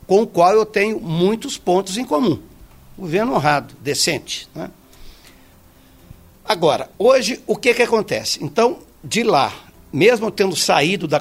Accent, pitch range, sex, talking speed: Brazilian, 145-215 Hz, male, 140 wpm